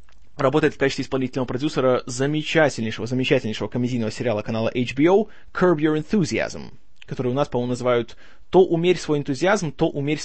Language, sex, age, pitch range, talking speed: Russian, male, 20-39, 125-170 Hz, 145 wpm